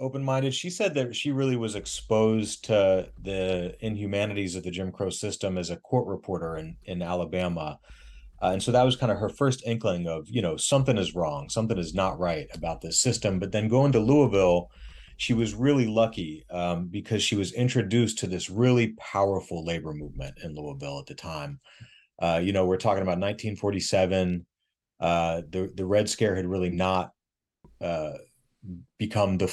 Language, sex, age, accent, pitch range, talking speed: English, male, 30-49, American, 90-110 Hz, 180 wpm